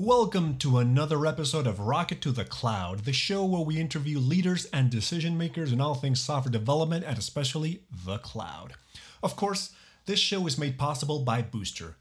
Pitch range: 125-160 Hz